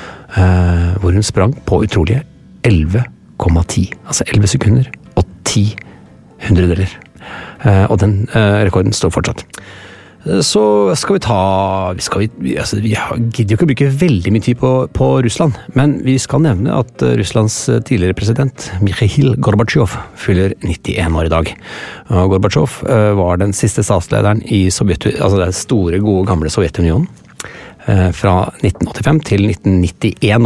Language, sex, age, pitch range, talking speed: English, male, 30-49, 90-120 Hz, 150 wpm